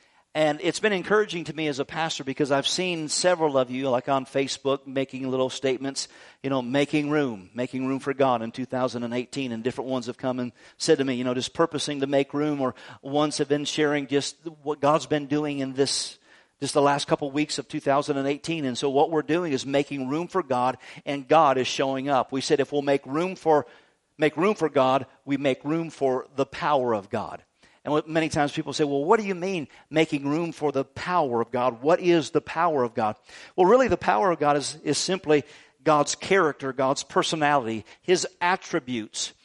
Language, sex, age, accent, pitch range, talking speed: English, male, 50-69, American, 135-160 Hz, 205 wpm